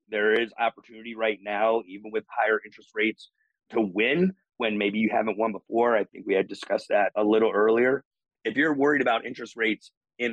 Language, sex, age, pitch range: English, male, 30-49, 110-125 Hz